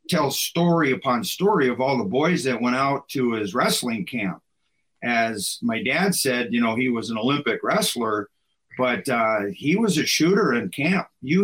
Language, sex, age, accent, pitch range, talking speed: English, male, 50-69, American, 125-160 Hz, 185 wpm